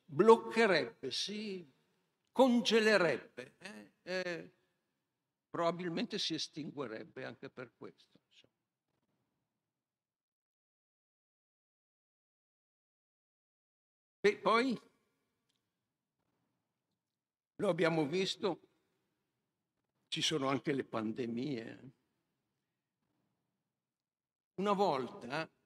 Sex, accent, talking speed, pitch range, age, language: male, native, 55 wpm, 150-180 Hz, 60-79, Italian